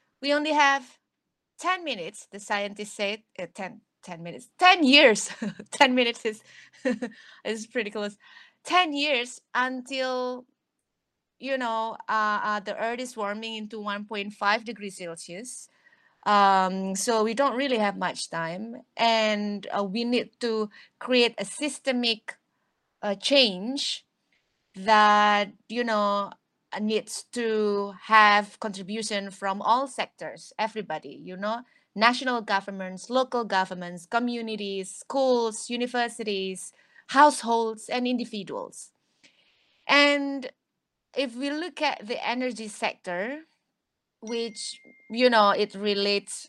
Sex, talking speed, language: female, 115 wpm, Indonesian